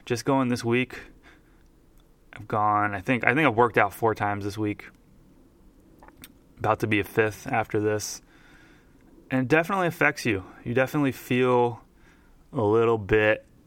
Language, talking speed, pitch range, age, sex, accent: English, 155 wpm, 100-120 Hz, 20-39, male, American